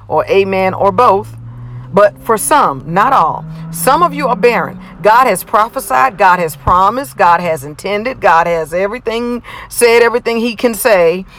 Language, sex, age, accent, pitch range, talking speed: English, female, 50-69, American, 175-235 Hz, 165 wpm